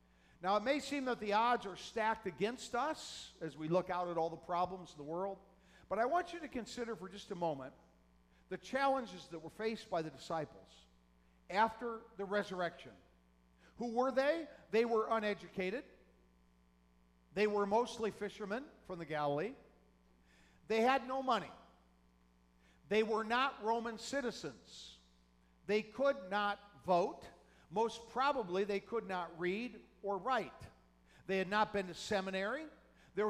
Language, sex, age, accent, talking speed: English, male, 50-69, American, 150 wpm